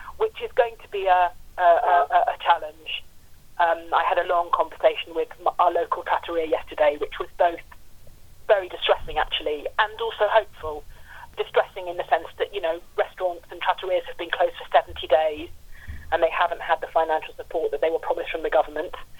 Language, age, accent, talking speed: English, 30-49, British, 190 wpm